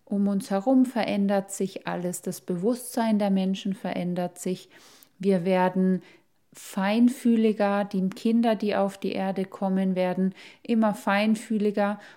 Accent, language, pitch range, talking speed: German, German, 195-220 Hz, 125 wpm